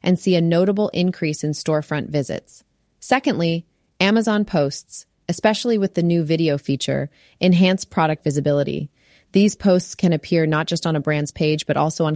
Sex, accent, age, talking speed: female, American, 30-49, 165 wpm